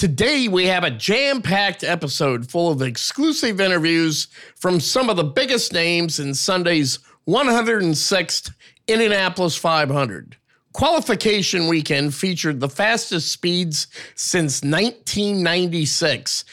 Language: English